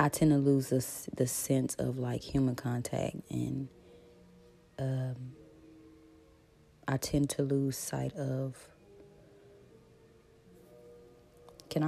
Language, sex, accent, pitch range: English, female, American, 130-160 Hz